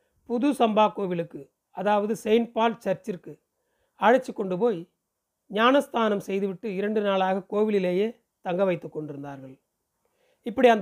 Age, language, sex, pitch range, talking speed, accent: 40-59, Tamil, male, 170-220 Hz, 110 wpm, native